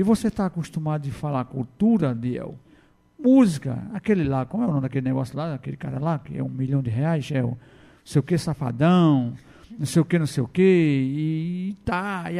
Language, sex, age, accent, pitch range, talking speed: Portuguese, male, 50-69, Brazilian, 135-180 Hz, 220 wpm